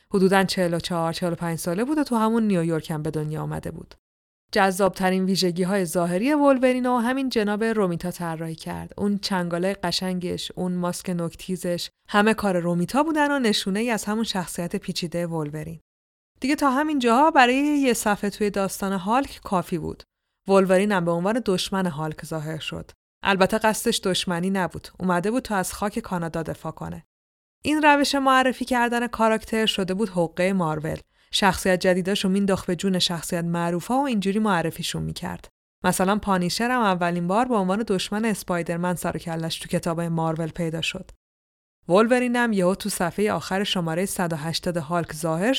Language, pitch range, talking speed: Persian, 170-220 Hz, 155 wpm